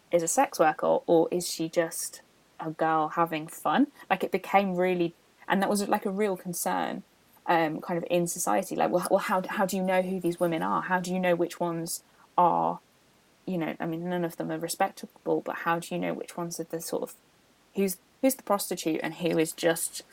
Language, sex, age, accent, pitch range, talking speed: English, female, 20-39, British, 170-195 Hz, 225 wpm